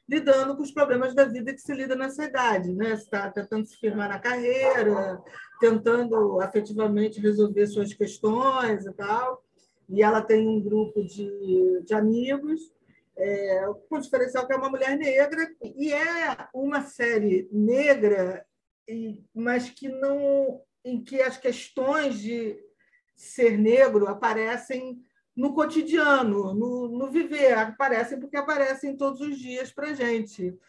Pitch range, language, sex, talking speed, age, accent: 210-265 Hz, Portuguese, female, 140 wpm, 40-59, Brazilian